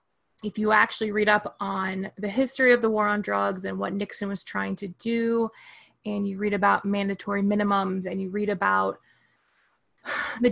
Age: 20-39